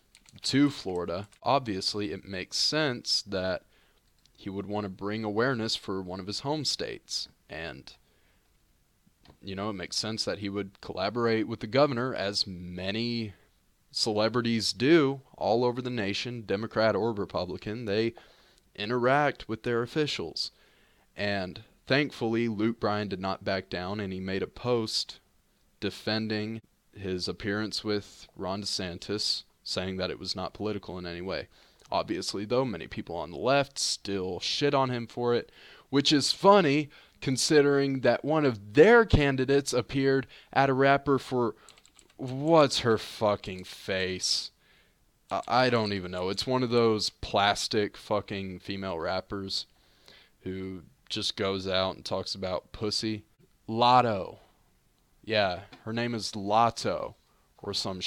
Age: 20-39